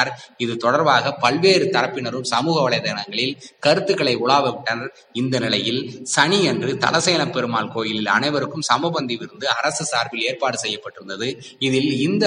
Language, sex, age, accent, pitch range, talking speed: Tamil, male, 20-39, native, 120-160 Hz, 110 wpm